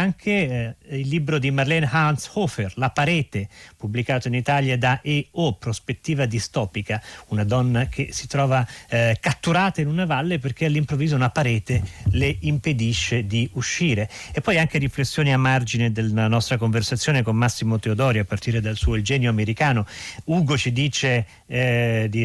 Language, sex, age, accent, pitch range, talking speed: Italian, male, 40-59, native, 115-140 Hz, 160 wpm